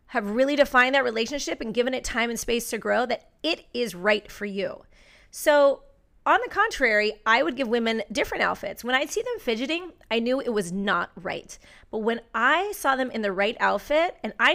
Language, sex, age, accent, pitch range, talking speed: English, female, 30-49, American, 210-280 Hz, 210 wpm